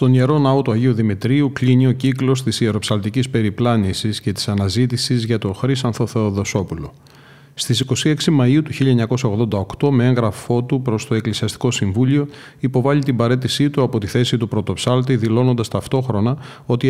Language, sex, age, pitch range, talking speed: Greek, male, 40-59, 115-140 Hz, 155 wpm